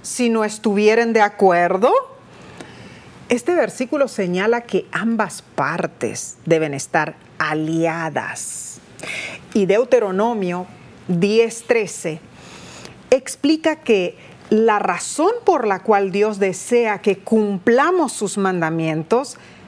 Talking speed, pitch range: 90 wpm, 180-255 Hz